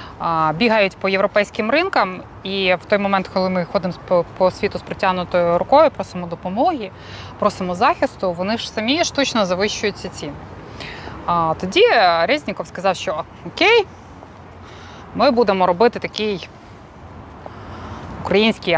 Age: 20-39